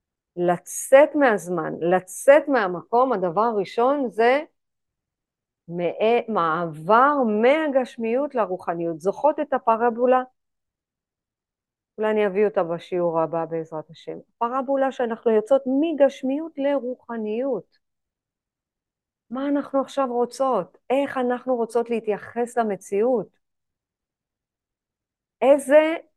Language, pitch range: Hebrew, 190-255 Hz